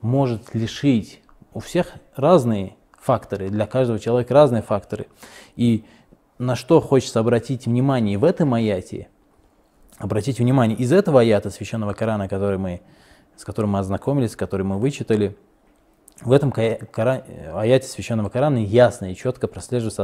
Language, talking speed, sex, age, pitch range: Russian, 135 wpm, male, 20-39, 105-125 Hz